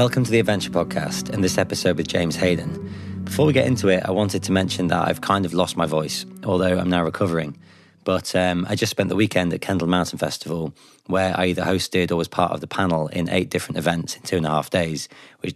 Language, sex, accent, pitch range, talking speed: English, male, British, 85-95 Hz, 245 wpm